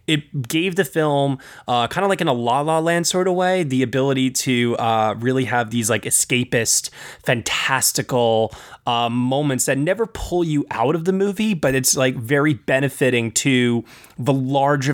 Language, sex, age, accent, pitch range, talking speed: English, male, 20-39, American, 115-145 Hz, 175 wpm